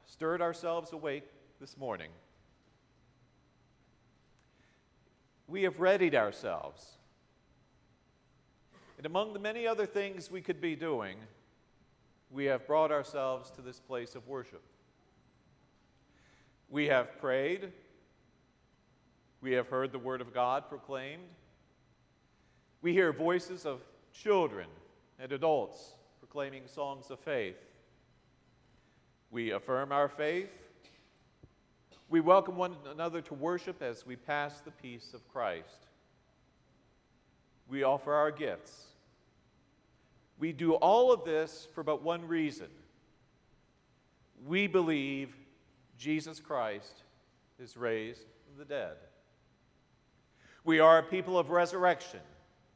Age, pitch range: 40-59, 130-170 Hz